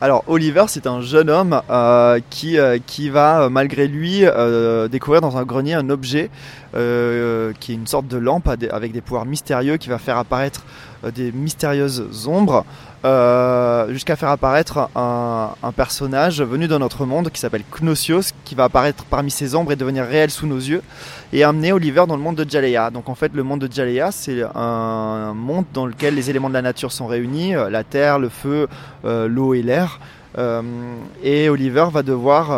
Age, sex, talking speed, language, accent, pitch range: 20-39, male, 195 wpm, French, French, 125-150 Hz